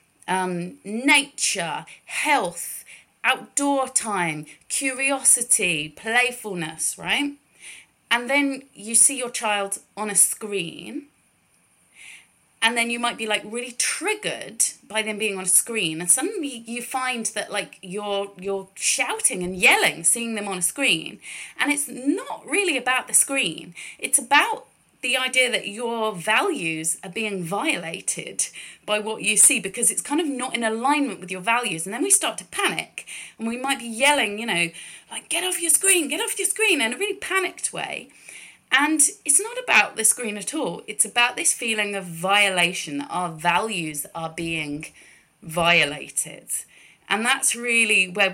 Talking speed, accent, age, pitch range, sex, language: 160 wpm, British, 30-49, 185-270 Hz, female, English